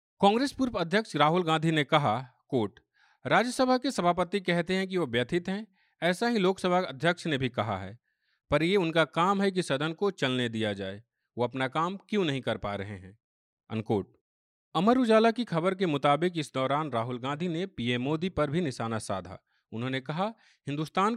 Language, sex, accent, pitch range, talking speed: Hindi, male, native, 125-180 Hz, 185 wpm